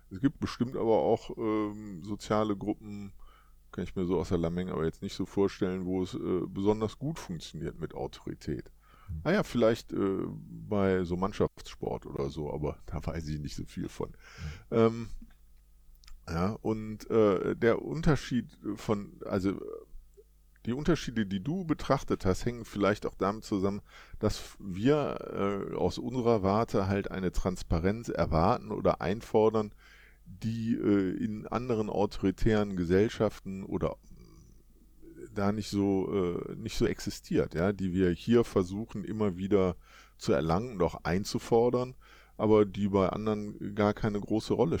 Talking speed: 150 wpm